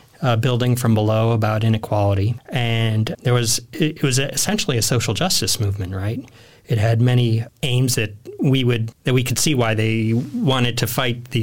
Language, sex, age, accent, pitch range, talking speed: English, male, 40-59, American, 115-135 Hz, 180 wpm